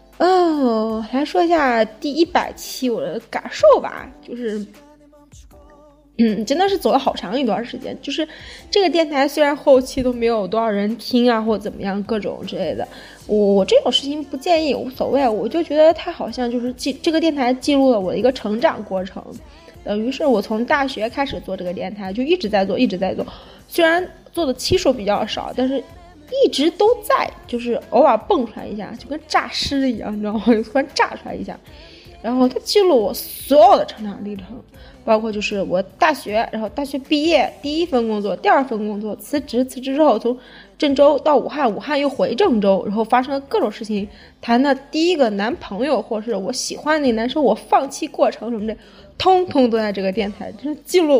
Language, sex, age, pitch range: Chinese, female, 20-39, 220-295 Hz